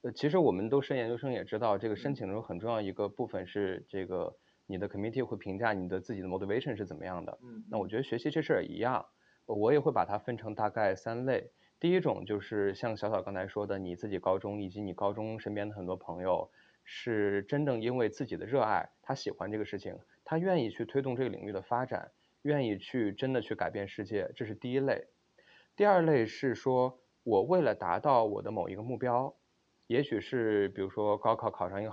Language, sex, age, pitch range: Chinese, male, 20-39, 100-130 Hz